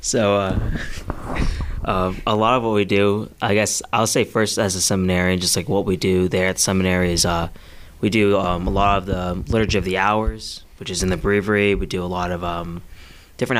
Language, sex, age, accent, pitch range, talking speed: English, male, 20-39, American, 95-115 Hz, 225 wpm